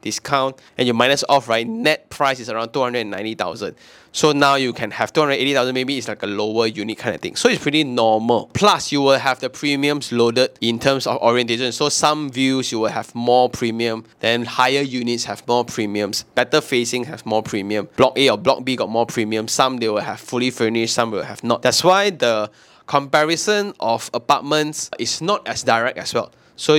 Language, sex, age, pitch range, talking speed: English, male, 20-39, 115-145 Hz, 220 wpm